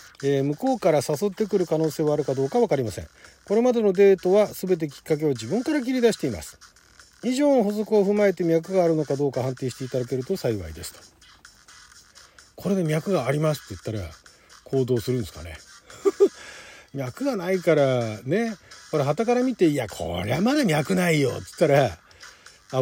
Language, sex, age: Japanese, male, 40-59